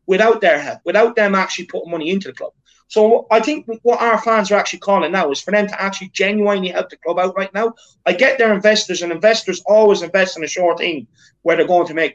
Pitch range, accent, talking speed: 170-220 Hz, British, 245 wpm